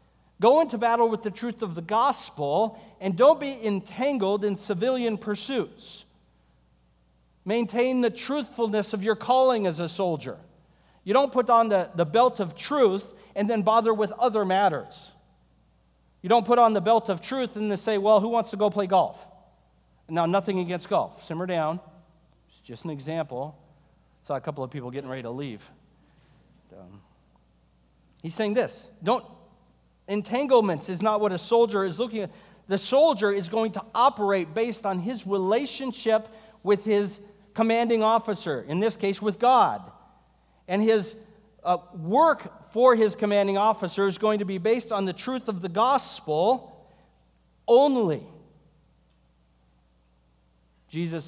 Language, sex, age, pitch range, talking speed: English, male, 40-59, 160-225 Hz, 155 wpm